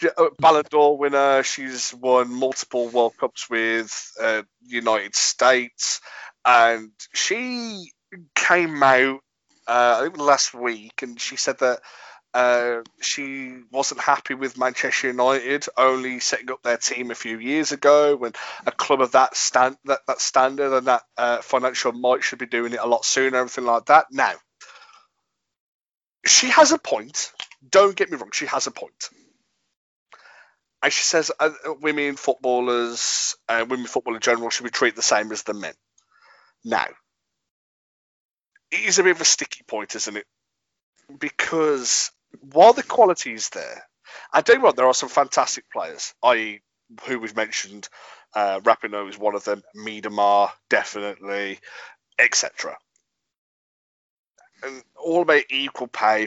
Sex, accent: male, British